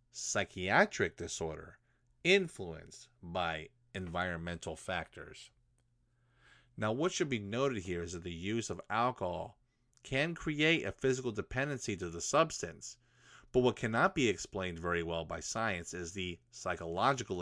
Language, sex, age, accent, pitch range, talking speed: English, male, 30-49, American, 90-120 Hz, 130 wpm